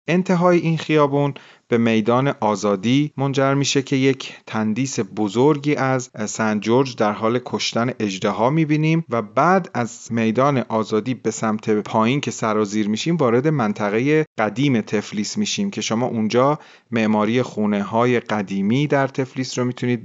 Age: 40-59